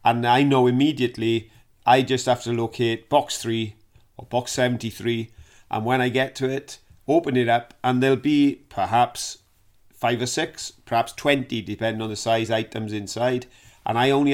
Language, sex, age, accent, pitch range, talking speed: English, male, 40-59, British, 110-125 Hz, 170 wpm